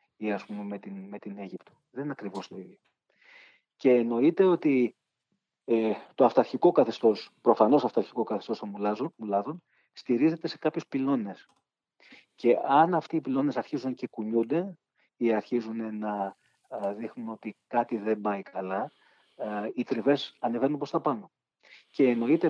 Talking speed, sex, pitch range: 145 wpm, male, 105-135 Hz